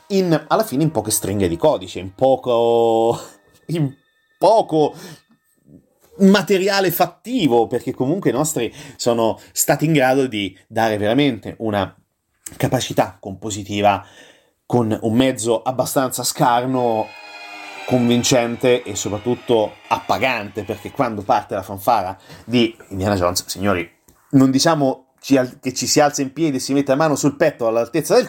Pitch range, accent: 105-140 Hz, native